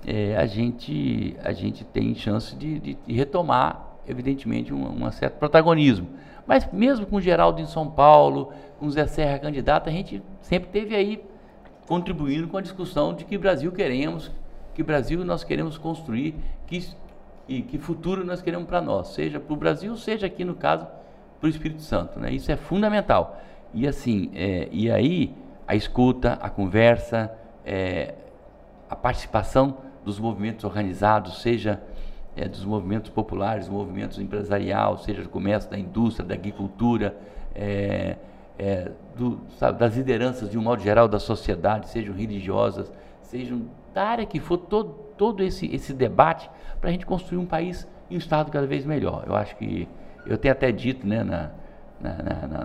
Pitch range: 100-160 Hz